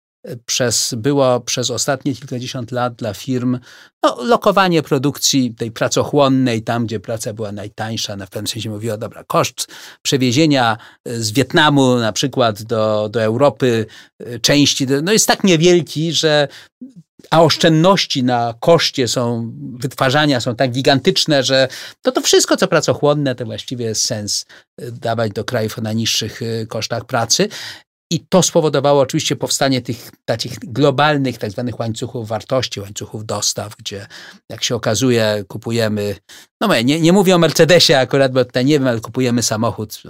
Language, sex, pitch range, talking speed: Polish, male, 115-150 Hz, 145 wpm